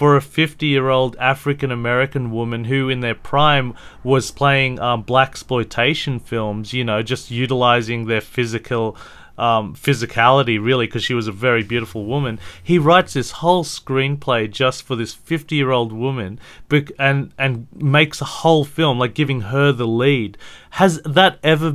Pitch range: 115-150 Hz